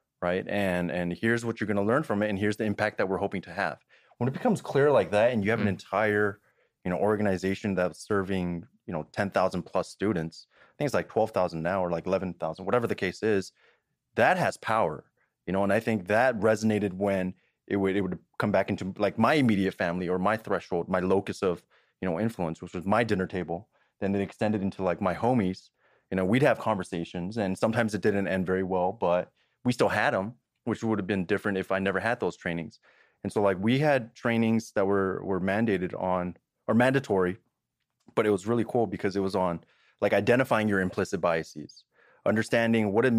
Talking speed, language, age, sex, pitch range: 215 wpm, English, 30-49, male, 95-110 Hz